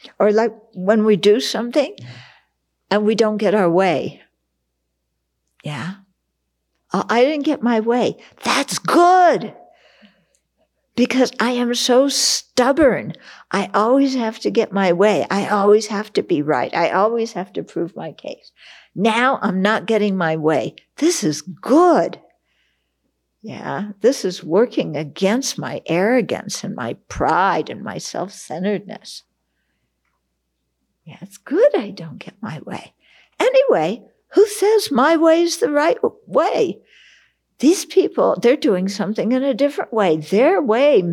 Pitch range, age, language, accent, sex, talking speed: 155-255 Hz, 60-79, English, American, female, 135 wpm